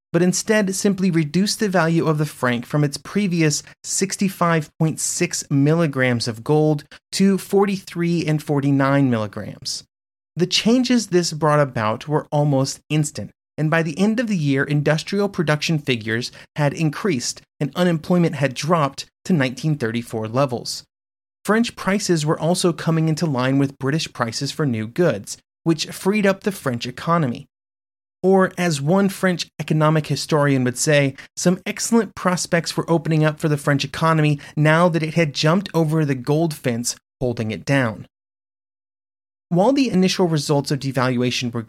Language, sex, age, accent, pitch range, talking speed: English, male, 30-49, American, 135-175 Hz, 150 wpm